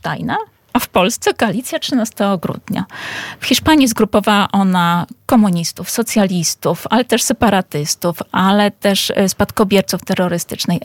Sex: female